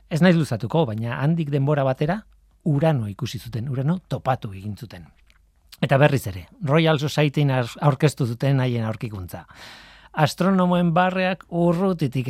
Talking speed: 130 wpm